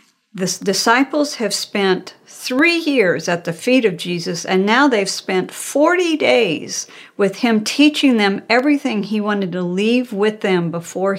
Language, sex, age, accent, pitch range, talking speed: English, female, 50-69, American, 190-255 Hz, 155 wpm